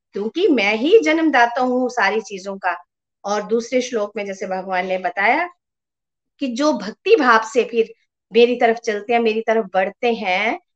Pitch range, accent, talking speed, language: 220-290 Hz, native, 165 wpm, Hindi